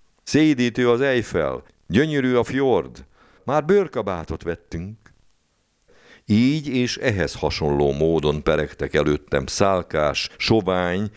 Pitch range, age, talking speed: 85-120 Hz, 60-79, 95 wpm